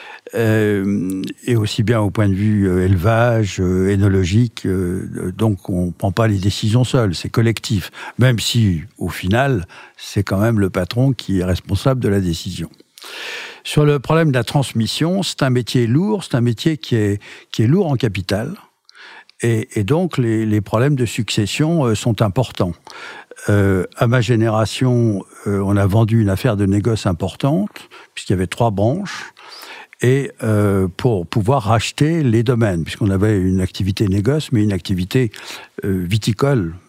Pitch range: 100-125 Hz